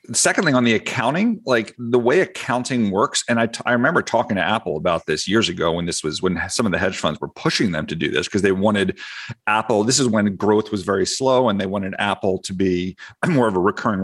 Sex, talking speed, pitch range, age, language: male, 245 wpm, 95-120 Hz, 40-59, English